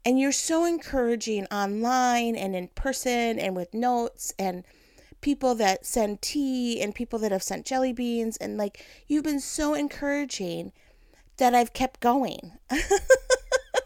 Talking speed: 145 wpm